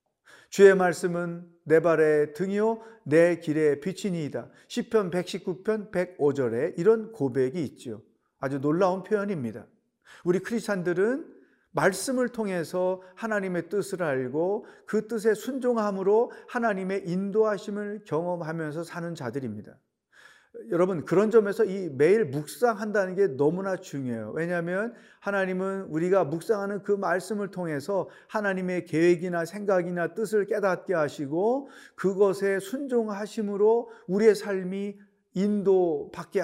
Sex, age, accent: male, 40-59, native